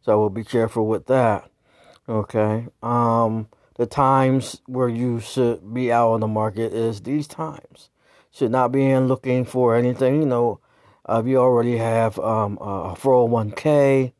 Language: English